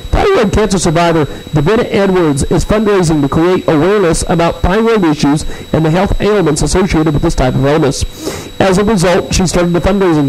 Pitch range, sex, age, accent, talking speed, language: 155-225 Hz, male, 50-69, American, 170 wpm, English